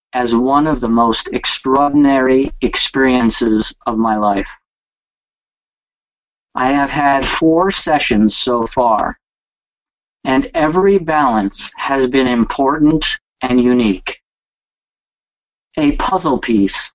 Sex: male